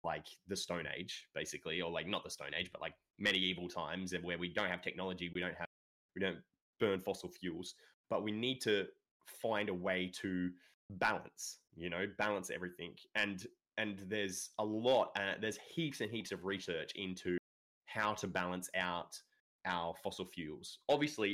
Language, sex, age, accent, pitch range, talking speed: English, male, 20-39, Australian, 85-105 Hz, 175 wpm